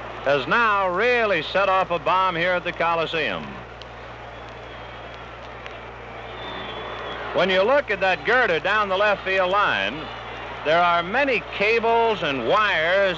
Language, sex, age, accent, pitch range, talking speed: English, male, 60-79, American, 185-225 Hz, 130 wpm